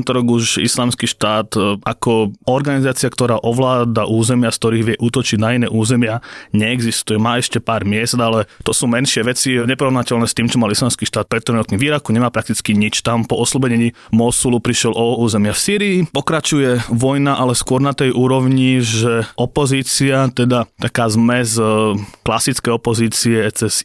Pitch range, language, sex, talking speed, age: 115-130 Hz, Slovak, male, 155 wpm, 20-39